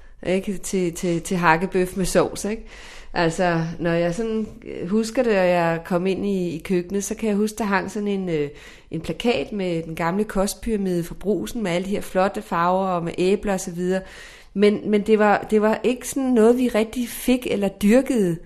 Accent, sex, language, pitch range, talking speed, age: Danish, female, English, 175-210 Hz, 195 wpm, 30-49